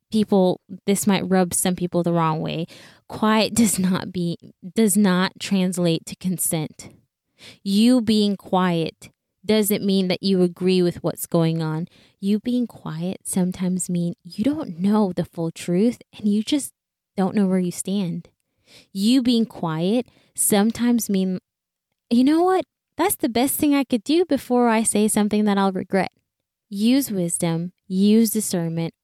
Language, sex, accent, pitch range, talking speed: English, female, American, 180-215 Hz, 155 wpm